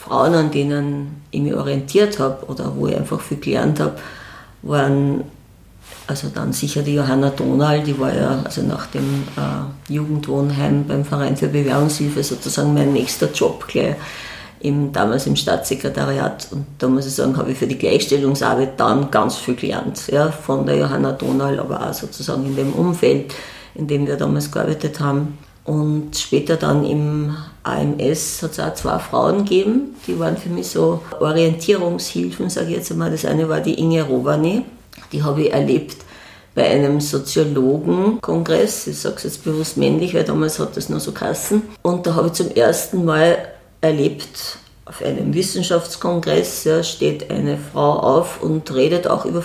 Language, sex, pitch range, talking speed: German, female, 135-165 Hz, 165 wpm